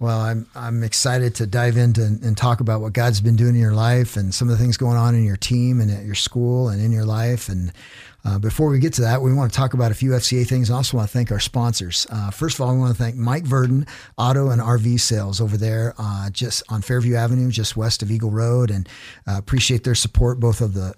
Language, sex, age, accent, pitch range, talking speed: English, male, 50-69, American, 110-125 Hz, 265 wpm